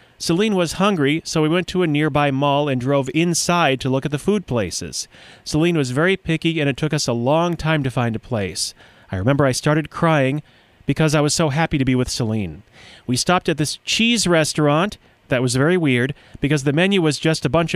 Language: English